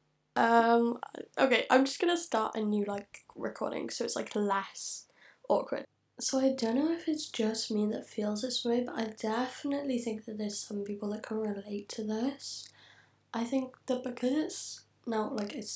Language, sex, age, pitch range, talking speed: English, female, 10-29, 205-235 Hz, 185 wpm